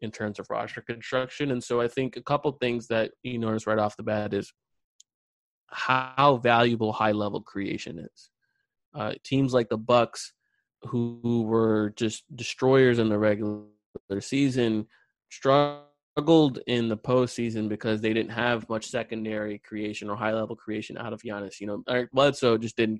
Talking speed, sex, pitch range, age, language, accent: 165 wpm, male, 110-125 Hz, 20-39, English, American